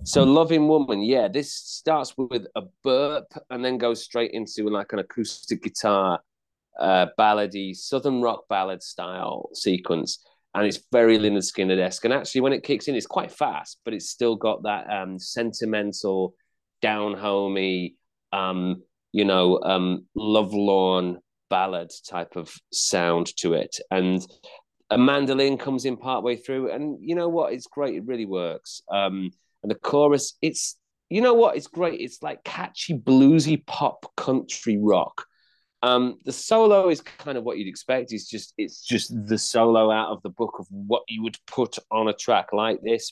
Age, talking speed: 30-49, 170 wpm